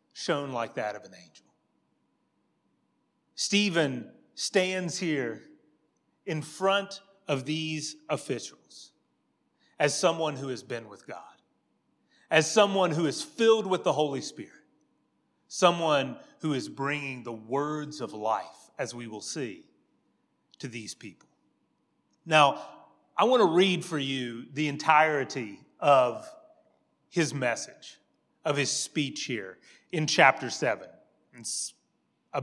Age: 30-49